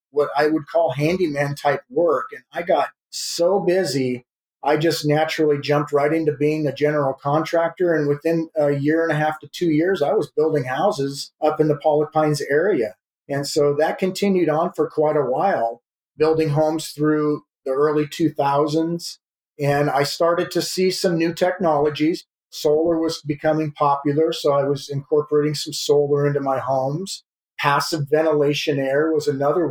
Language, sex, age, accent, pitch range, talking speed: English, male, 40-59, American, 145-160 Hz, 170 wpm